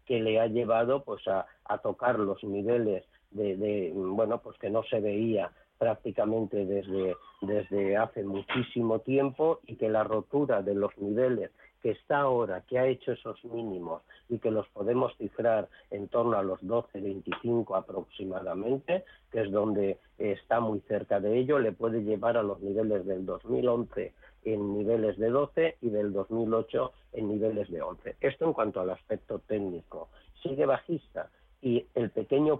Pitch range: 105-120 Hz